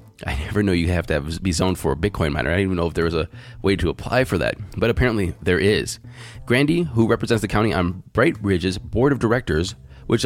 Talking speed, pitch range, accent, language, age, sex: 240 wpm, 90-120 Hz, American, English, 20-39, male